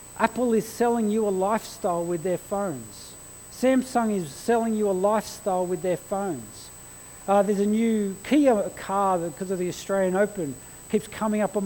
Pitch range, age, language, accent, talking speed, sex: 185-240 Hz, 50-69, English, Australian, 170 wpm, male